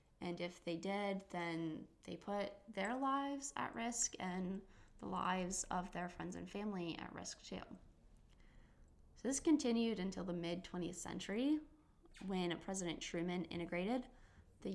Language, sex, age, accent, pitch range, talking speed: English, female, 10-29, American, 170-205 Hz, 140 wpm